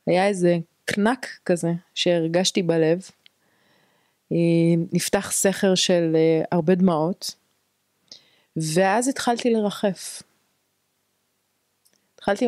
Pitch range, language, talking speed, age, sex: 165-195 Hz, Hebrew, 70 wpm, 30-49, female